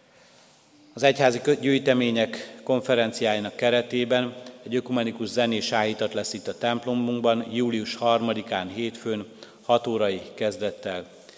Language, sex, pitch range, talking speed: Hungarian, male, 105-120 Hz, 100 wpm